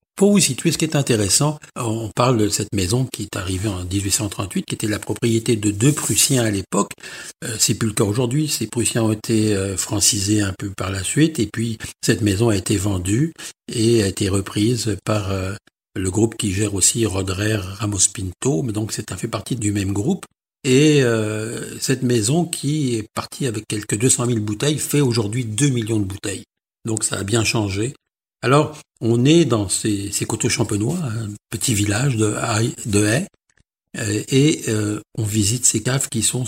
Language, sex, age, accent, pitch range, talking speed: French, male, 60-79, French, 105-130 Hz, 195 wpm